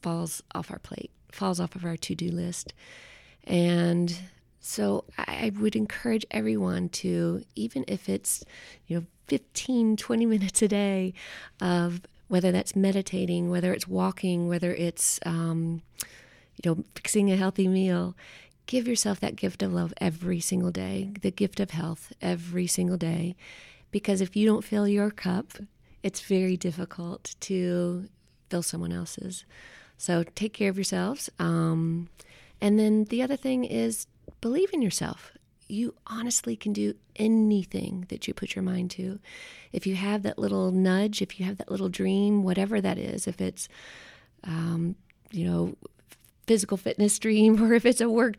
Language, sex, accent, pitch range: English, female, American, 170-210 Hz